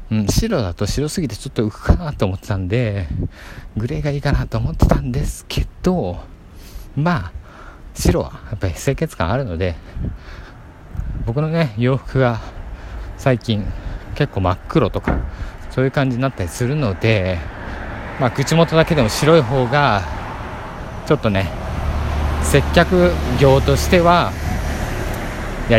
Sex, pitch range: male, 90-135 Hz